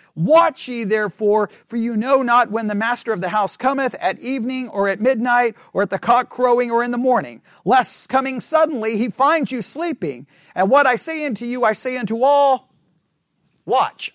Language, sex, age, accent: English, male, 40-59, American